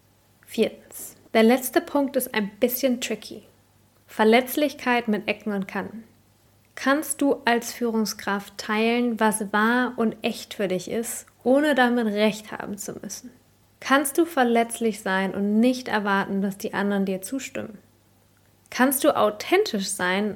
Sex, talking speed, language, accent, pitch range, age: female, 140 wpm, English, German, 195-235 Hz, 20-39